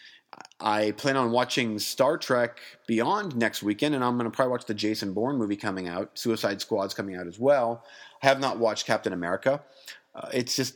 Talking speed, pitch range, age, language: 200 wpm, 105-140 Hz, 40-59, English